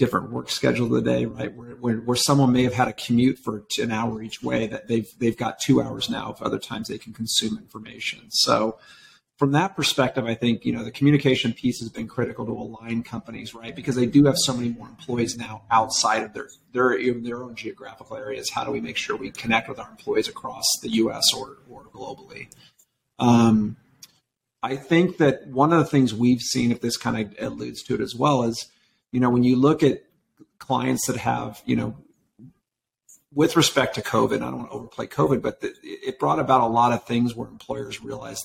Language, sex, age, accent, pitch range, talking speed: English, male, 40-59, American, 115-130 Hz, 215 wpm